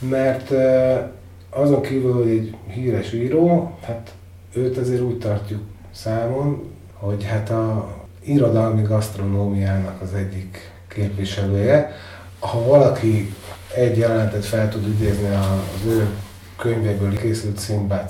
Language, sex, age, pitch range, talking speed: Hungarian, male, 30-49, 95-115 Hz, 110 wpm